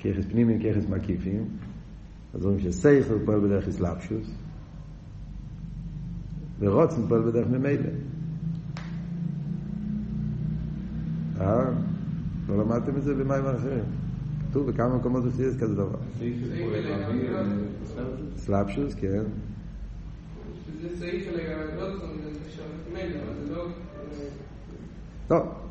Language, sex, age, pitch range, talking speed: Hebrew, male, 50-69, 110-150 Hz, 70 wpm